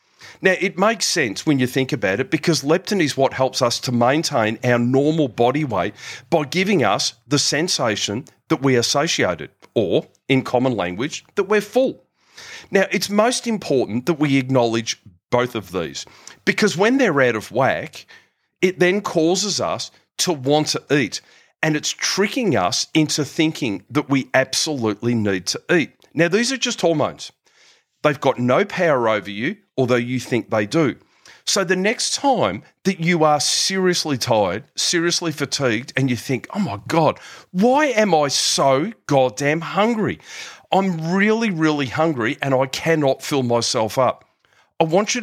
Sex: male